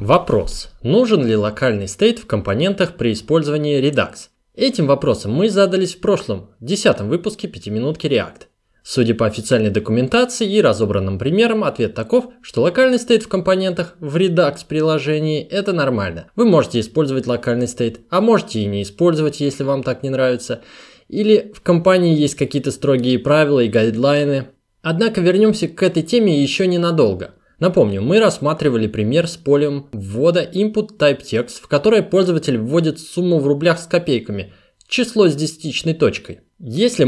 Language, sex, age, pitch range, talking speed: Russian, male, 20-39, 120-190 Hz, 155 wpm